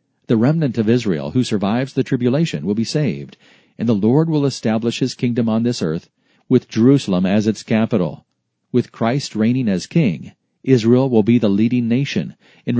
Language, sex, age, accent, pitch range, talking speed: English, male, 40-59, American, 105-140 Hz, 180 wpm